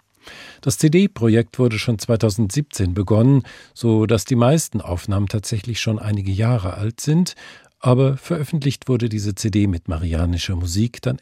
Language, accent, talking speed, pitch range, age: German, German, 140 wpm, 100-140 Hz, 50-69